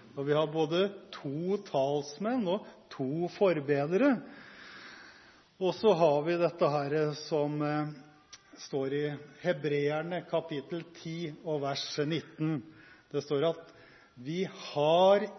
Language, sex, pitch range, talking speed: Swedish, male, 145-180 Hz, 115 wpm